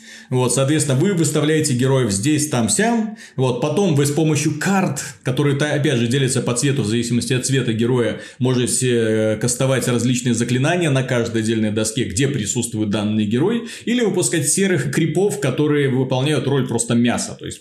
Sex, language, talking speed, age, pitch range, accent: male, Russian, 155 wpm, 30-49, 120-160 Hz, native